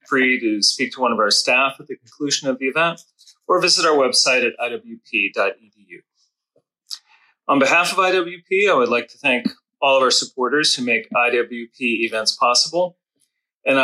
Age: 30-49